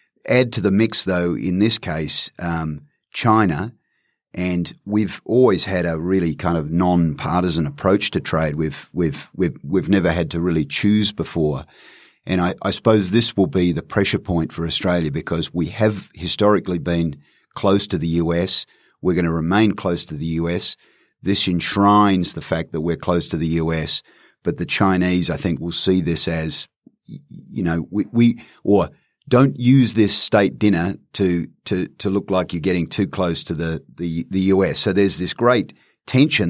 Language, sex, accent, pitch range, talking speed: English, male, Australian, 85-100 Hz, 175 wpm